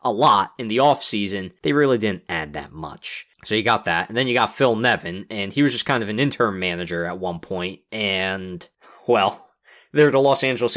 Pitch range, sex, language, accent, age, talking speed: 105-135 Hz, male, English, American, 20-39, 215 wpm